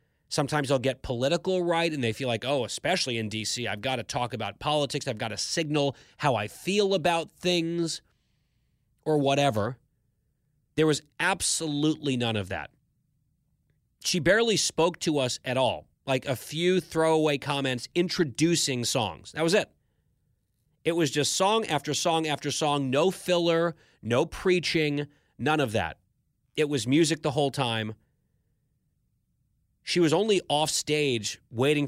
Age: 30-49